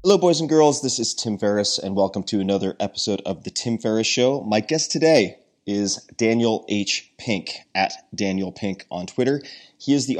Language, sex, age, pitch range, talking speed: English, male, 30-49, 95-115 Hz, 195 wpm